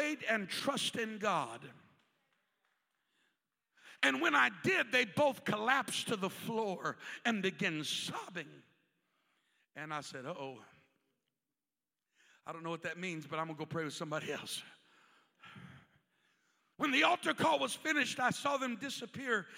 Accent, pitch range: American, 195-235 Hz